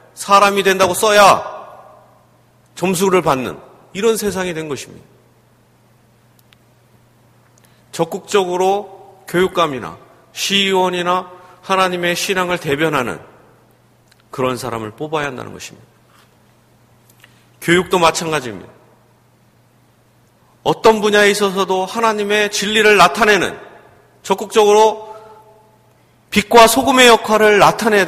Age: 40-59